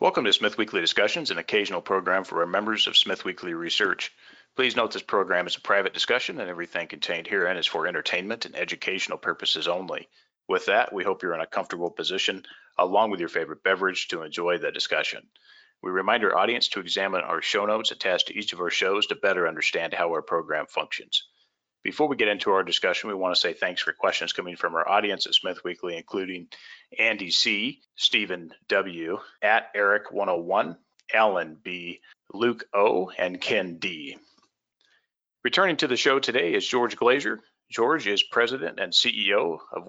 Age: 40-59